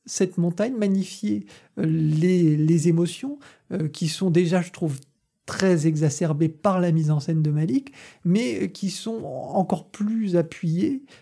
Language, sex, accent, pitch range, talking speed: French, male, French, 155-200 Hz, 145 wpm